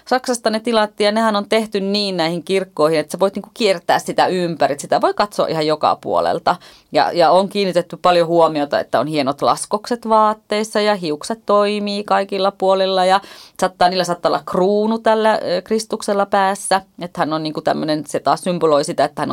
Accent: native